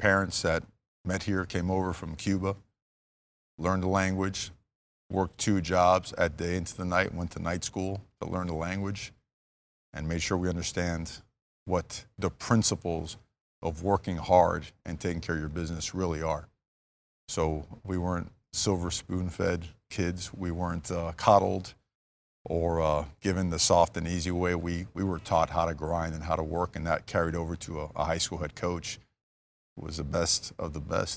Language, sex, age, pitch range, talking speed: English, male, 50-69, 80-95 Hz, 180 wpm